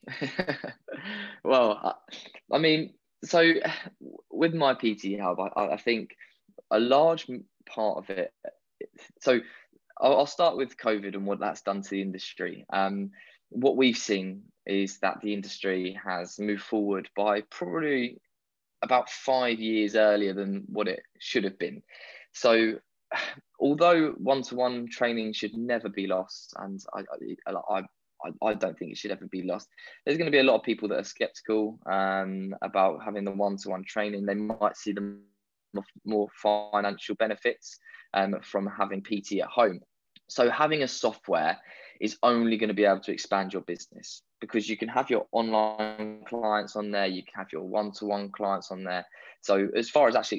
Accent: British